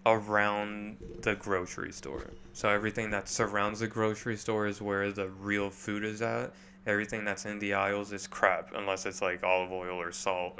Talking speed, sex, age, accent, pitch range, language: 180 wpm, male, 20-39, American, 95-110 Hz, English